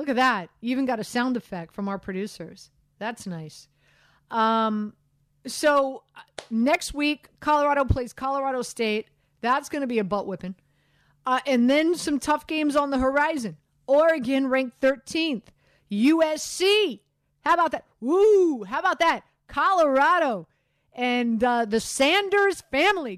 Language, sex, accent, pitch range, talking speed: English, female, American, 210-300 Hz, 140 wpm